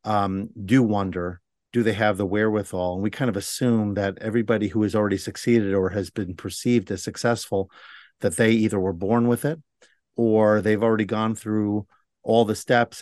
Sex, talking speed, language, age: male, 185 wpm, English, 50-69